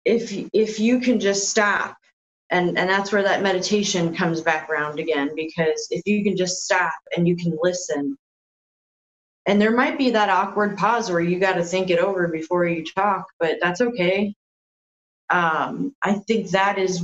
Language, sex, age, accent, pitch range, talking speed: English, female, 20-39, American, 165-200 Hz, 180 wpm